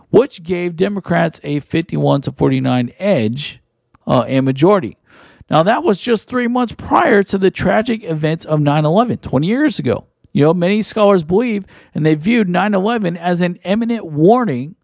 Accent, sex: American, male